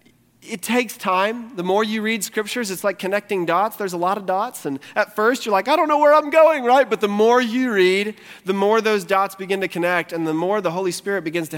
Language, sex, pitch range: English, male, 135-195 Hz